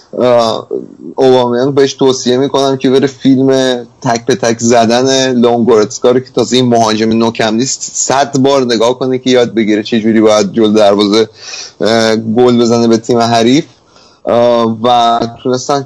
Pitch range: 115-130 Hz